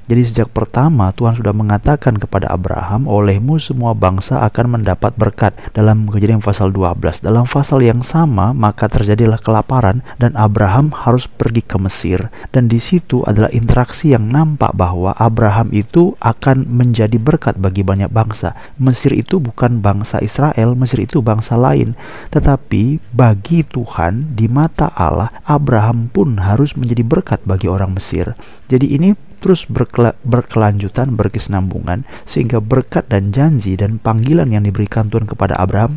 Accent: native